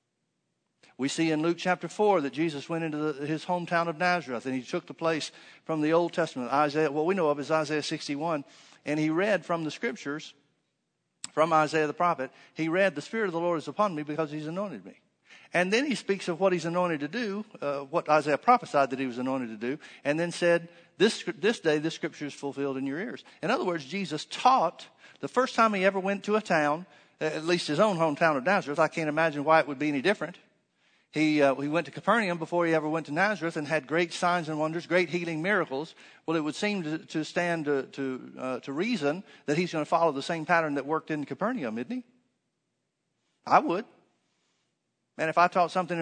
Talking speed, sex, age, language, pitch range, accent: 225 wpm, male, 50-69, English, 150-180 Hz, American